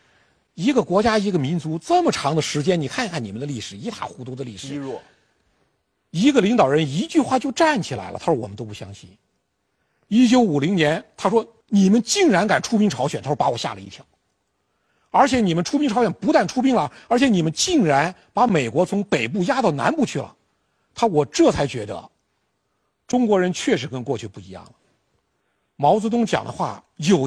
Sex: male